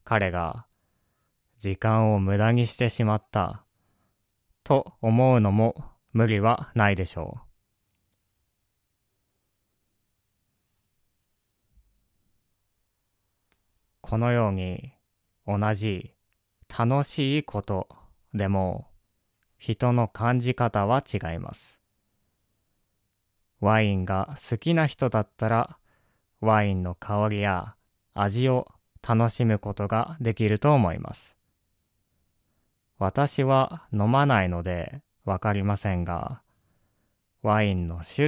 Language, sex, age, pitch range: Japanese, male, 20-39, 95-115 Hz